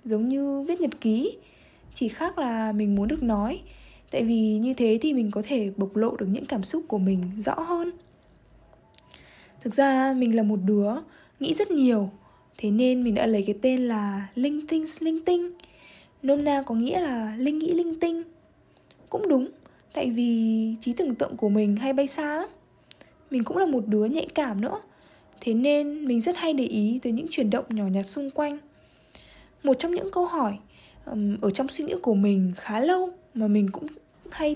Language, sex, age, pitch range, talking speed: Vietnamese, female, 20-39, 220-305 Hz, 195 wpm